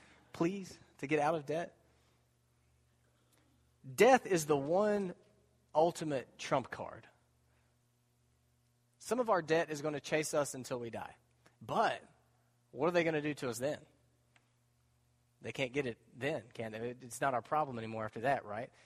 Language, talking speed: English, 160 wpm